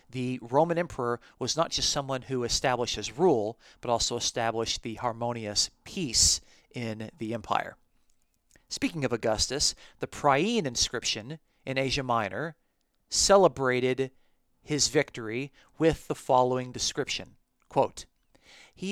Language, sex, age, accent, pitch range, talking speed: English, male, 40-59, American, 120-155 Hz, 120 wpm